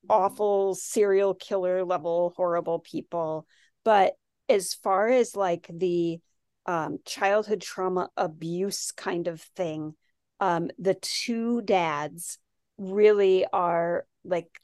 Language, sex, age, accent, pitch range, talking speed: English, female, 30-49, American, 175-205 Hz, 105 wpm